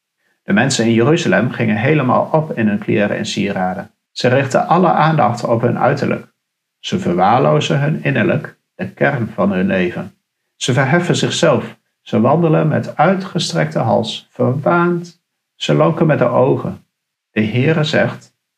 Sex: male